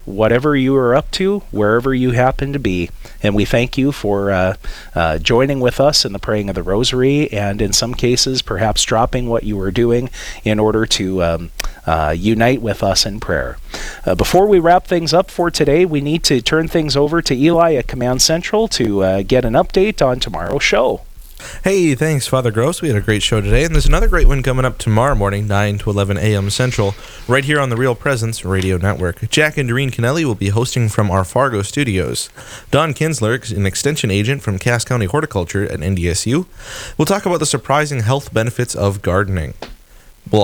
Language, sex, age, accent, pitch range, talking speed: English, male, 30-49, American, 100-140 Hz, 205 wpm